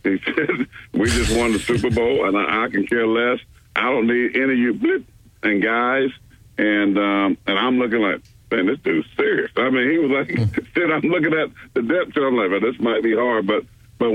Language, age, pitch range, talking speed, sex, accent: English, 50-69, 100-115 Hz, 230 wpm, male, American